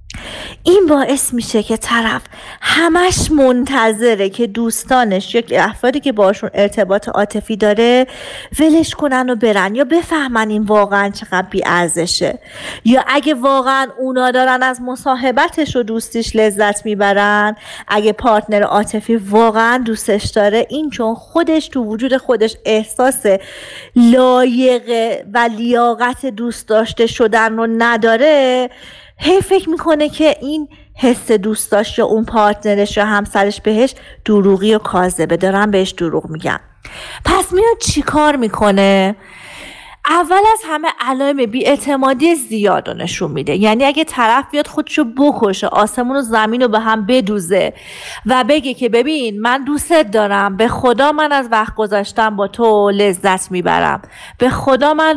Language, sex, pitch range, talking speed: Persian, female, 210-270 Hz, 135 wpm